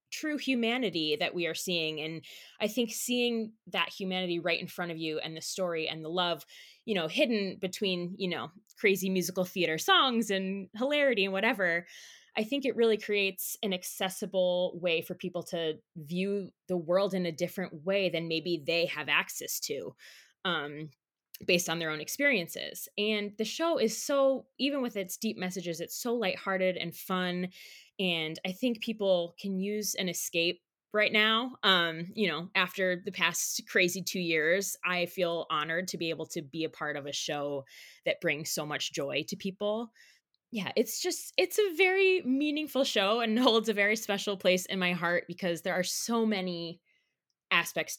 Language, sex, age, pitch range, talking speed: English, female, 20-39, 170-215 Hz, 180 wpm